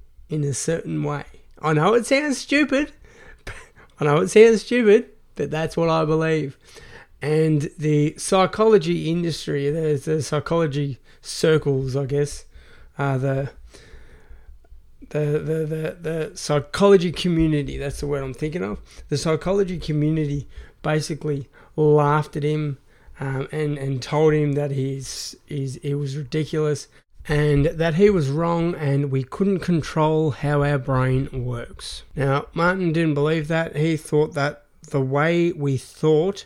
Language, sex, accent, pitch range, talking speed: English, male, Australian, 140-160 Hz, 145 wpm